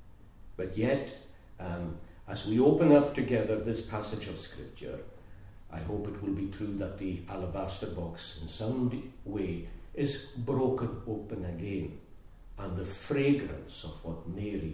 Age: 60-79